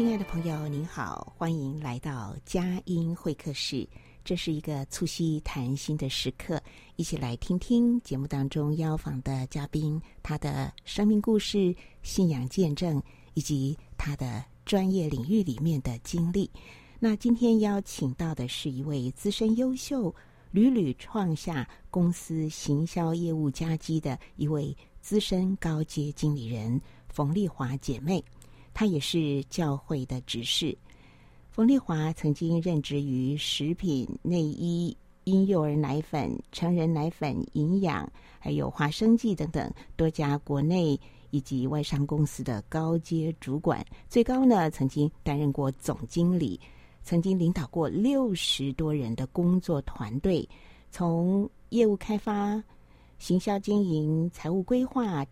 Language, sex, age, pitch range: Chinese, female, 50-69, 140-180 Hz